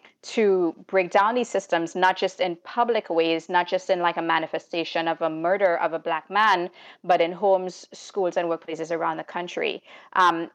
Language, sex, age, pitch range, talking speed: English, female, 30-49, 165-190 Hz, 190 wpm